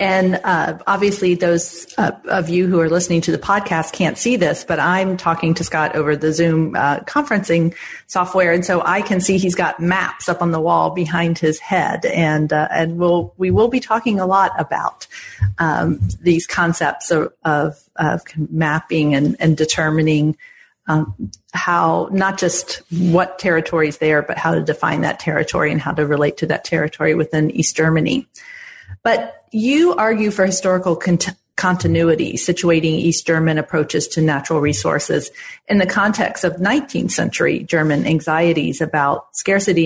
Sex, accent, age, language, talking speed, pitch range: female, American, 40-59, English, 165 wpm, 155-185 Hz